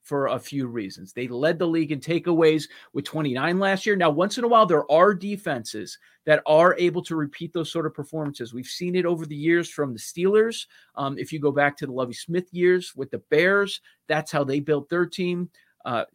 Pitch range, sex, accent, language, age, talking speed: 135-170 Hz, male, American, English, 40-59, 225 wpm